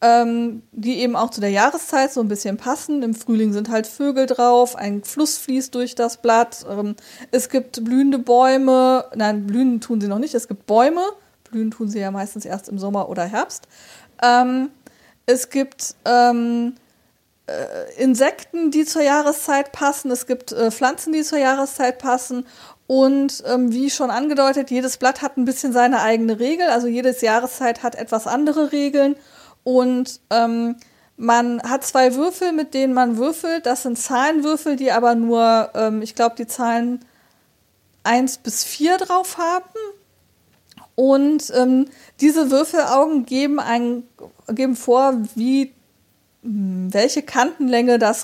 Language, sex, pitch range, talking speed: German, female, 230-275 Hz, 140 wpm